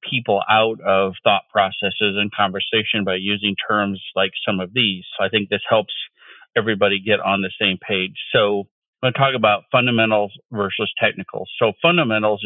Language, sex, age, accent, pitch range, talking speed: English, male, 50-69, American, 100-115 Hz, 175 wpm